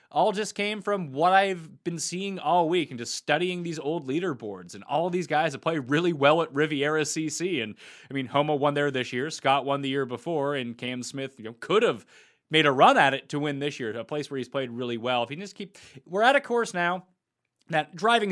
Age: 30-49